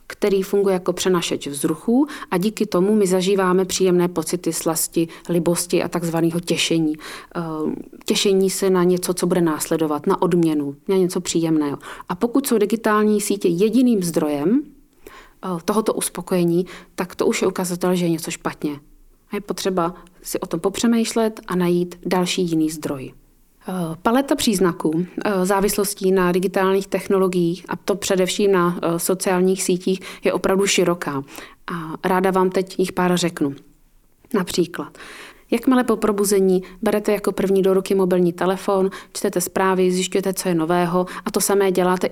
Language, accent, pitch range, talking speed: Czech, native, 175-200 Hz, 145 wpm